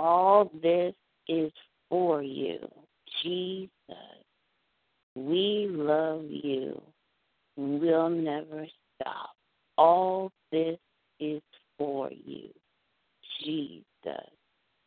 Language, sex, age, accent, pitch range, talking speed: English, female, 50-69, American, 135-160 Hz, 75 wpm